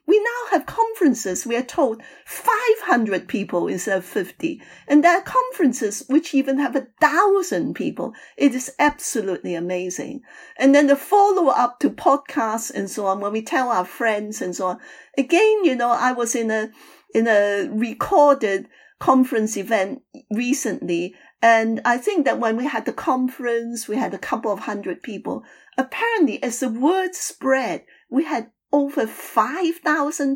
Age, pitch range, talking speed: 50-69, 220-295 Hz, 160 wpm